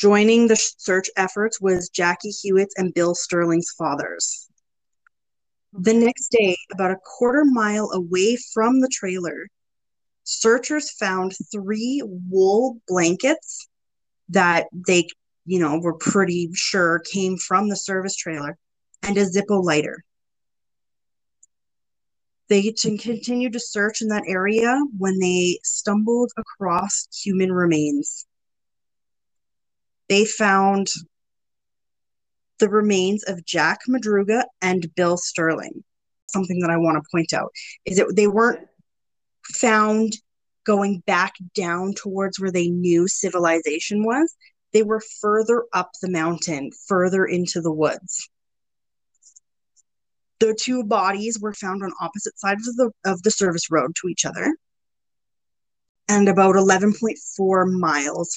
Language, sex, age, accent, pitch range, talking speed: English, female, 30-49, American, 175-220 Hz, 120 wpm